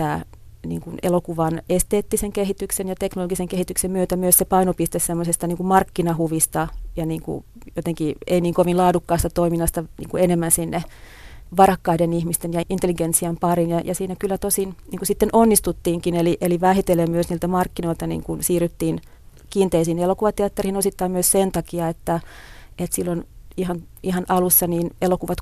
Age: 30-49